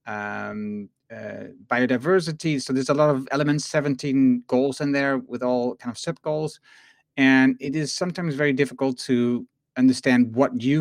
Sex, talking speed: male, 160 wpm